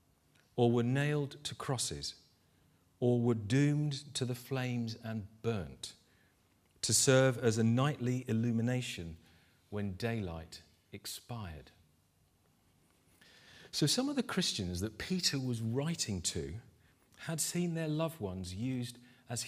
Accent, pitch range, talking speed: British, 100-140 Hz, 120 wpm